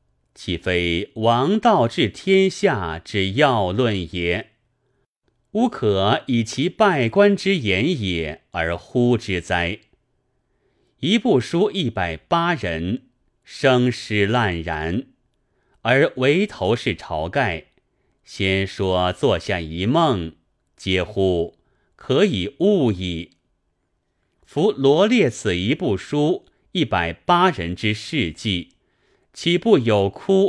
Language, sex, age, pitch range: Chinese, male, 30-49, 90-135 Hz